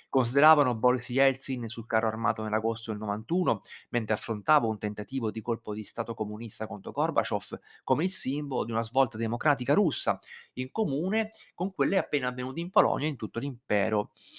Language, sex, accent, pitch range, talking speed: Italian, male, native, 110-160 Hz, 165 wpm